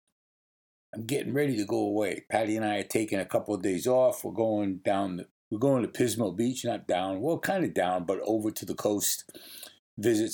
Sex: male